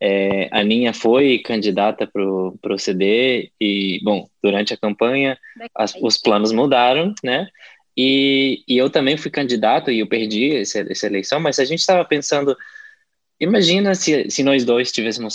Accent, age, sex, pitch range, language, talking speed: Brazilian, 20-39, male, 105-150 Hz, Portuguese, 160 wpm